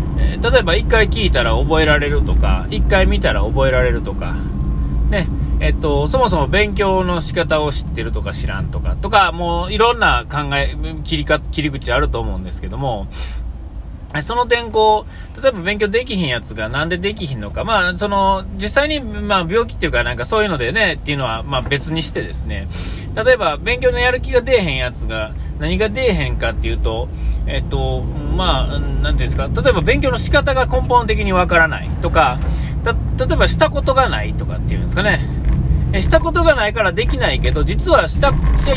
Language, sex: Japanese, male